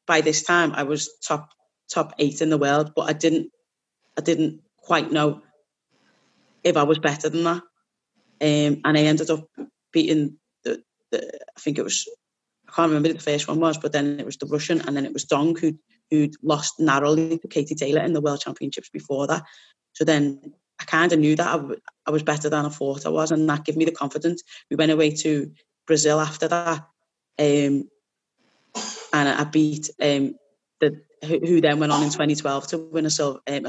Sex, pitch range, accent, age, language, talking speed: female, 150-165 Hz, British, 20-39, English, 205 wpm